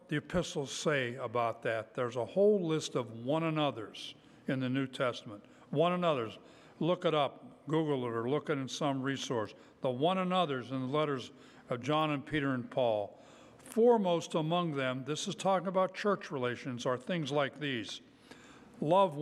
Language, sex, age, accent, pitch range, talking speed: English, male, 60-79, American, 130-185 Hz, 170 wpm